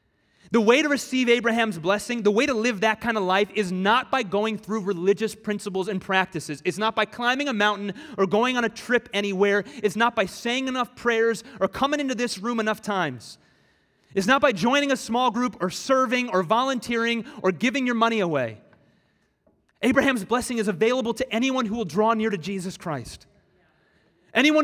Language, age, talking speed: English, 30-49, 190 wpm